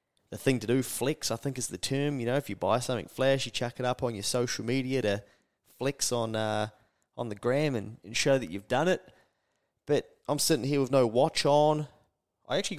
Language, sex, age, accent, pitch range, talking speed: English, male, 20-39, Australian, 105-140 Hz, 230 wpm